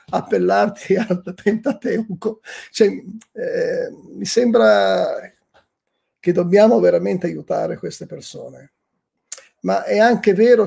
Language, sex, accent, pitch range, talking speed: Italian, male, native, 180-230 Hz, 90 wpm